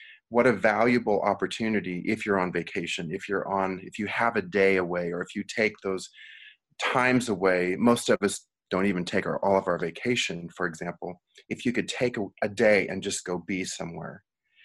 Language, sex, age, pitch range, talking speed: English, male, 30-49, 95-120 Hz, 195 wpm